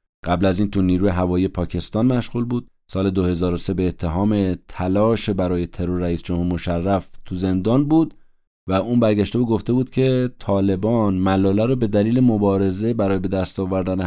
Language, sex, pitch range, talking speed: Persian, male, 90-105 Hz, 165 wpm